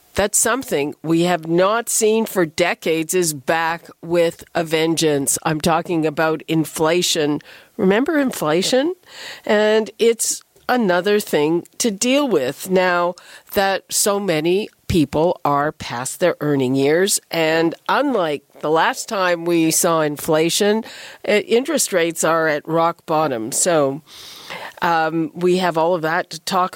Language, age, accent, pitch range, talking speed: English, 50-69, American, 160-210 Hz, 130 wpm